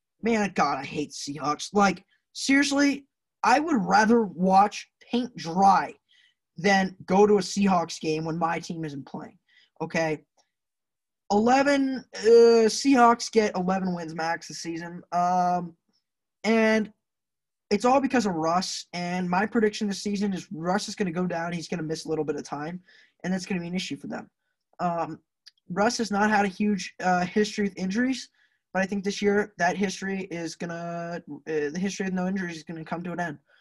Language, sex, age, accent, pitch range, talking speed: English, male, 20-39, American, 170-225 Hz, 180 wpm